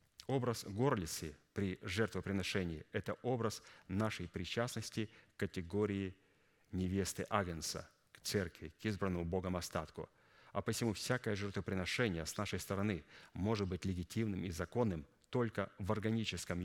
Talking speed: 120 wpm